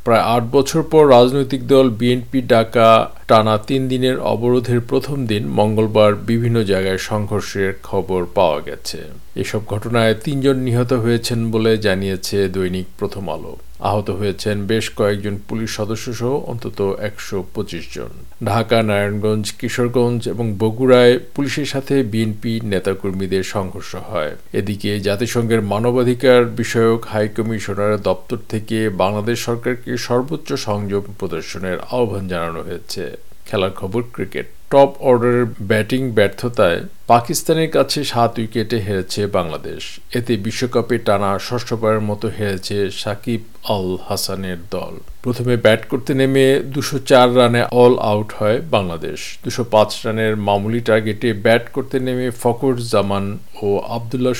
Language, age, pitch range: Bengali, 50-69, 100-125 Hz